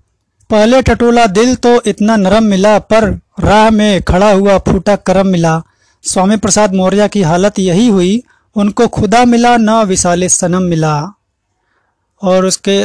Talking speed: 145 wpm